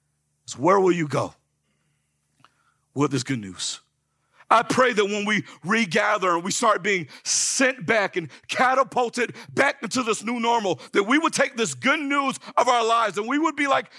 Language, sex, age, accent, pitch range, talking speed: English, male, 50-69, American, 150-230 Hz, 180 wpm